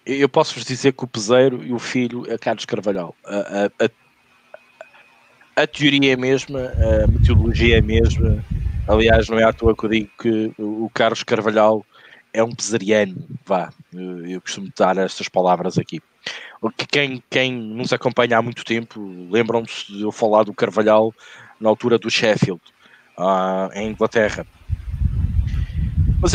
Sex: male